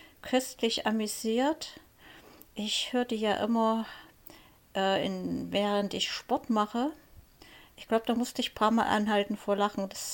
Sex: female